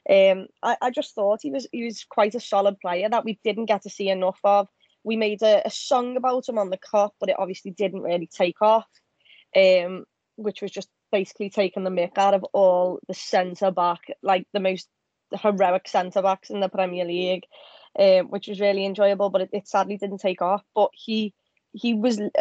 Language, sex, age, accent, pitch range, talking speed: English, female, 20-39, British, 185-210 Hz, 210 wpm